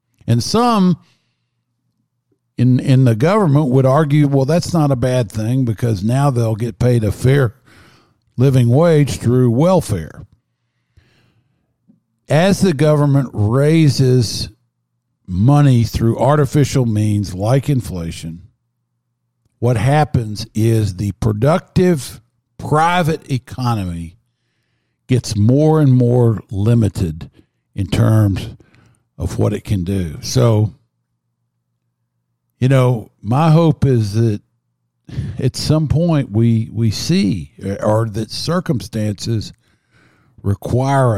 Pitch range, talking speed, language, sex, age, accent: 105-135 Hz, 105 wpm, English, male, 50-69, American